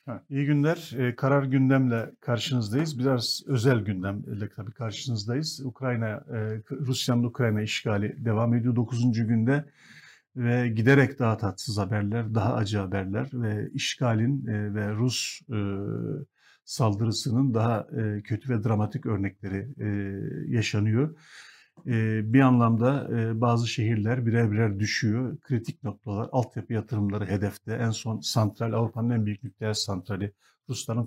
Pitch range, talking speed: 110-130 Hz, 115 wpm